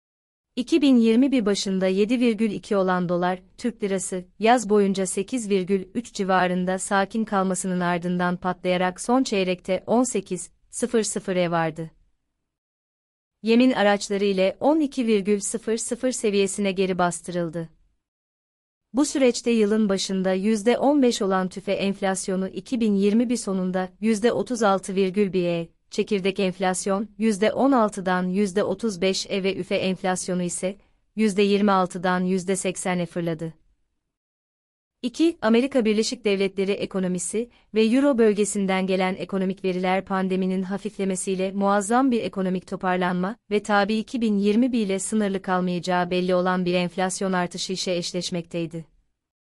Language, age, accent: Turkish, 30-49, native